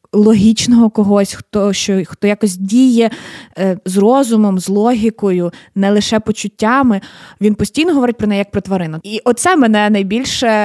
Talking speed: 150 wpm